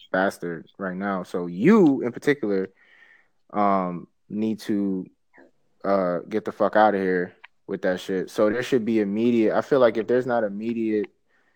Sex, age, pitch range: male, 20-39, 100-120 Hz